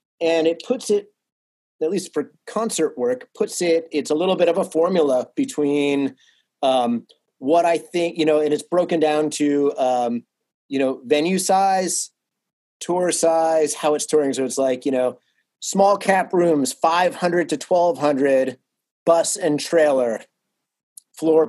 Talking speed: 155 wpm